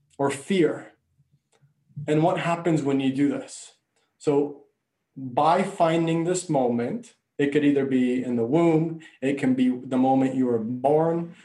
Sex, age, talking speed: male, 20-39, 150 wpm